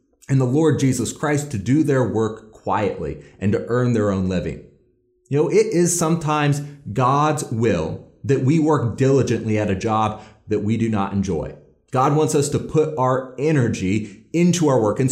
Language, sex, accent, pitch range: English, male, American, 110-155 Hz